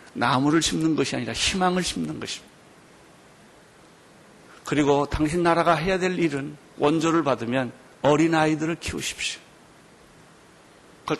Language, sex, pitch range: Korean, male, 140-185 Hz